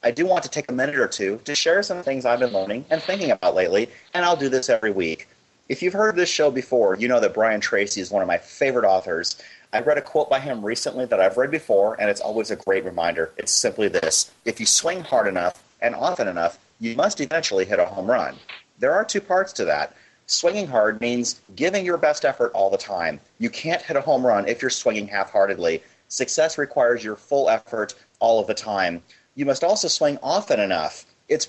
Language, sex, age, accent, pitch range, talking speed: English, male, 30-49, American, 110-175 Hz, 230 wpm